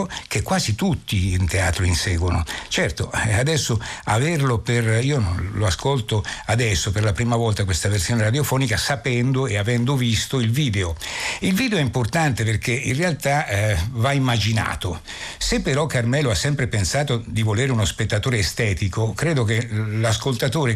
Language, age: Italian, 60-79